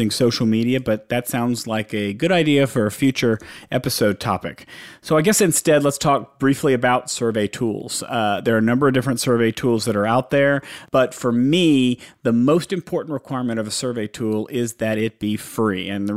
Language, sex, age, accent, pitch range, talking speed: English, male, 40-59, American, 110-135 Hz, 205 wpm